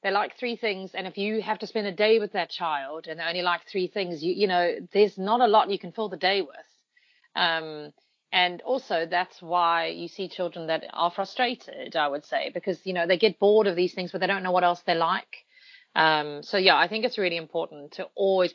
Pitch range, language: 170-225 Hz, English